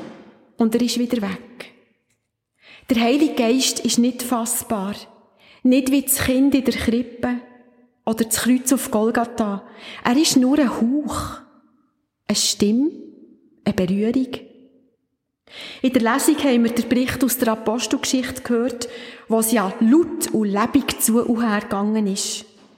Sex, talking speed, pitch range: female, 140 wpm, 220-255 Hz